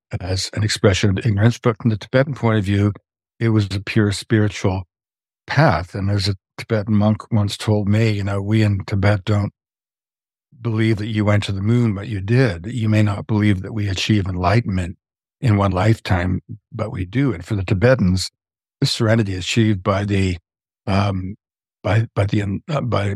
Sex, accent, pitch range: male, American, 100-120 Hz